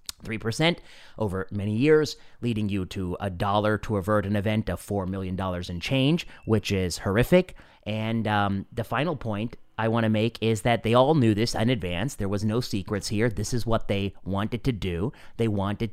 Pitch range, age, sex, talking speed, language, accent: 95-120 Hz, 30-49, male, 195 wpm, English, American